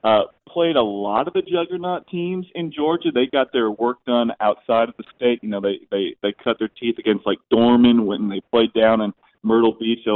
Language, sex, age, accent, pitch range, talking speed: English, male, 40-59, American, 105-120 Hz, 225 wpm